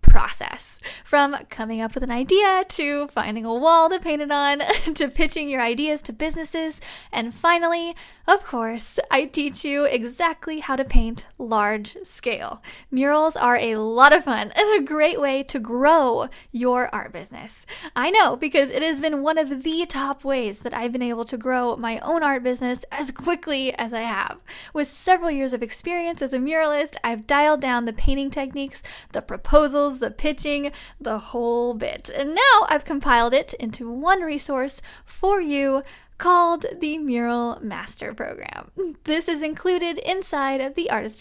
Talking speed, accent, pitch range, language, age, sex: 170 wpm, American, 245-320 Hz, English, 10-29, female